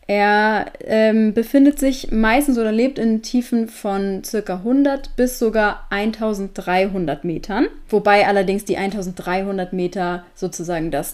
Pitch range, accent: 185-250 Hz, German